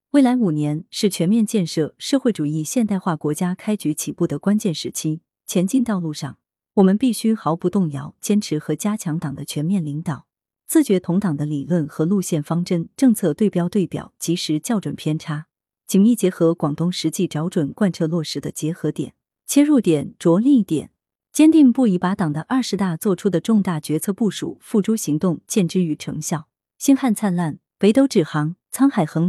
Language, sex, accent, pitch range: Chinese, female, native, 155-215 Hz